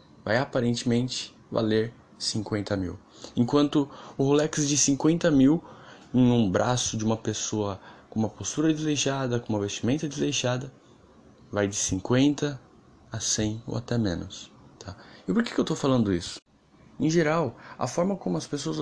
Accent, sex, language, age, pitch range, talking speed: Brazilian, male, Portuguese, 10-29, 110-140 Hz, 155 wpm